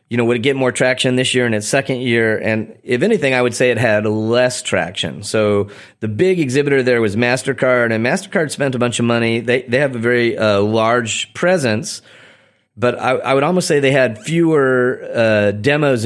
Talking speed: 210 wpm